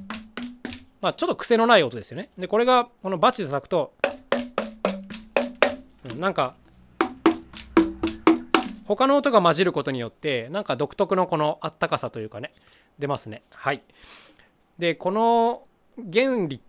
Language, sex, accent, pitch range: Japanese, male, native, 145-240 Hz